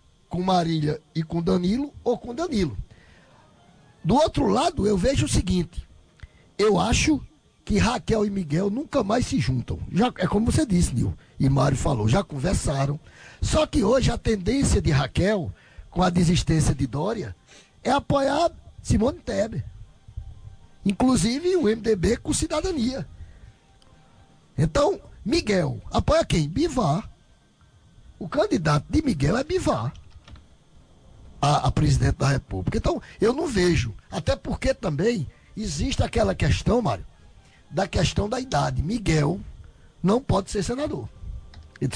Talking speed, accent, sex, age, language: 135 wpm, Brazilian, male, 50-69, Portuguese